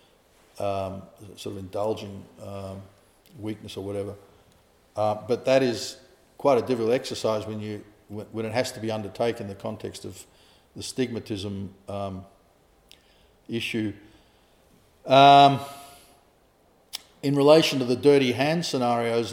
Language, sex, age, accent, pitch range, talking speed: English, male, 50-69, Australian, 105-120 Hz, 125 wpm